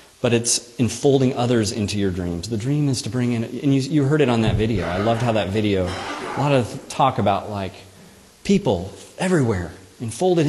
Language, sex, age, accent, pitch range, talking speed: English, male, 30-49, American, 105-135 Hz, 200 wpm